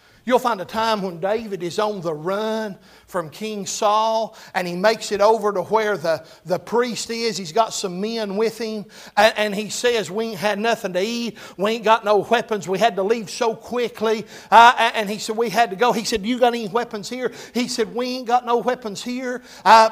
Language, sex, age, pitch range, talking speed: English, male, 60-79, 175-225 Hz, 225 wpm